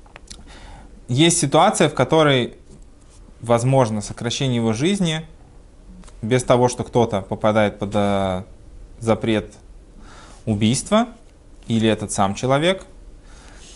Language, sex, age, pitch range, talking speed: Russian, male, 20-39, 100-130 Hz, 90 wpm